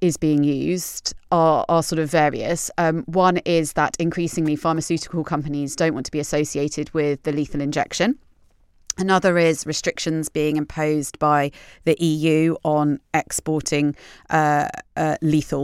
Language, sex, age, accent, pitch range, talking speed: English, female, 30-49, British, 150-170 Hz, 140 wpm